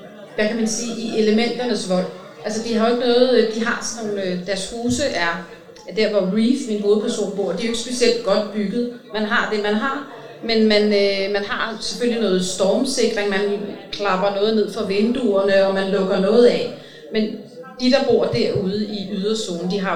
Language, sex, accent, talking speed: Danish, female, native, 200 wpm